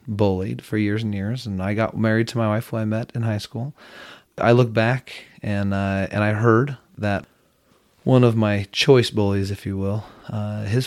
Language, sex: English, male